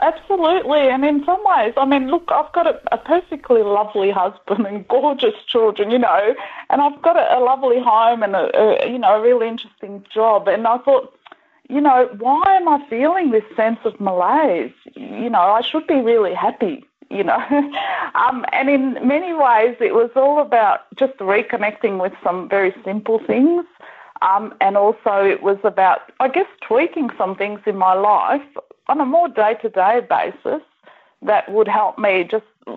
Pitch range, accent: 200-290 Hz, Australian